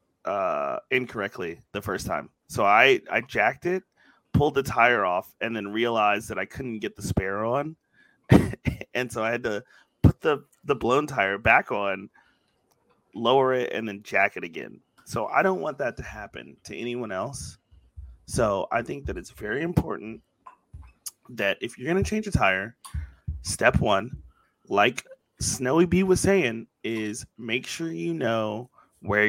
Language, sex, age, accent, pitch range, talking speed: English, male, 30-49, American, 100-130 Hz, 165 wpm